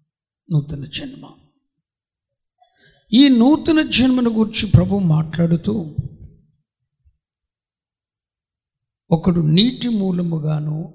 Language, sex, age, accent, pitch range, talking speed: Telugu, male, 60-79, native, 130-180 Hz, 60 wpm